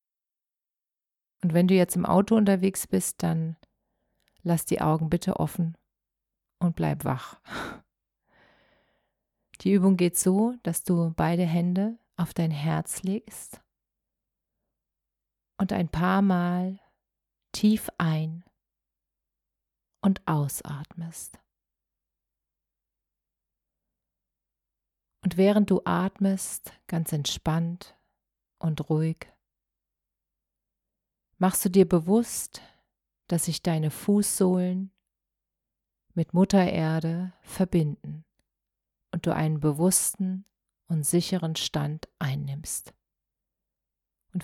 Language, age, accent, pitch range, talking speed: German, 40-59, German, 150-185 Hz, 90 wpm